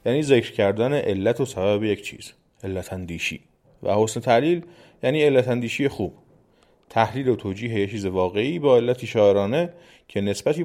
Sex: male